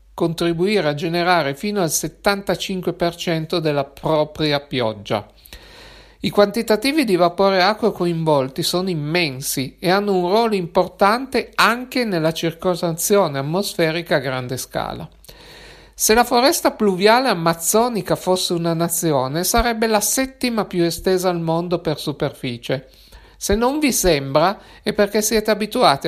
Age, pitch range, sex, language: 60-79, 155-200 Hz, male, Italian